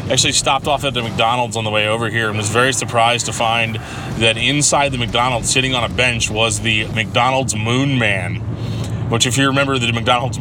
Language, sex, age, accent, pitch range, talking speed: English, male, 20-39, American, 110-125 Hz, 210 wpm